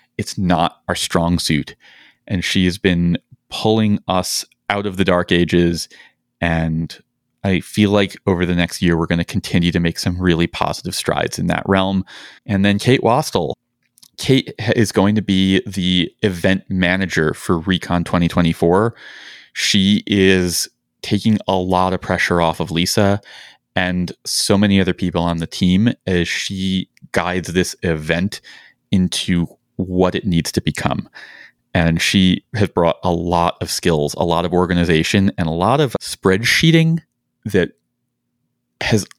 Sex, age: male, 30-49